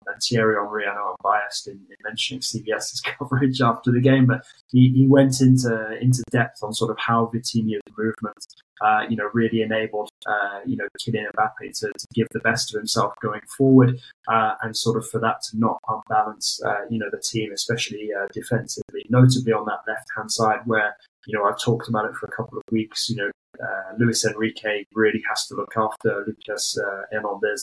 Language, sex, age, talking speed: English, male, 20-39, 200 wpm